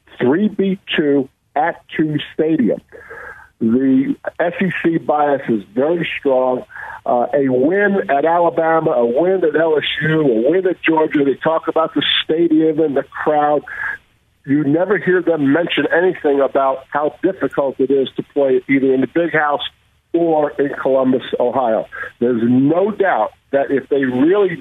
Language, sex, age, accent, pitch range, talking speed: English, male, 50-69, American, 135-170 Hz, 145 wpm